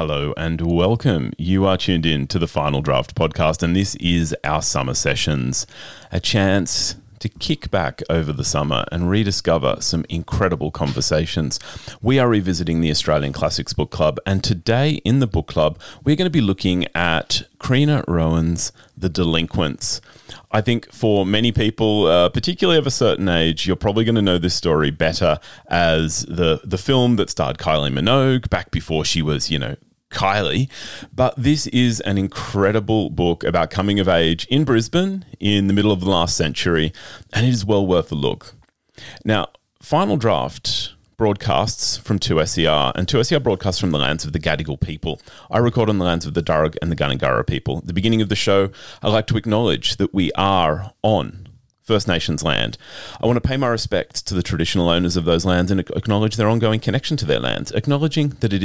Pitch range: 80-115 Hz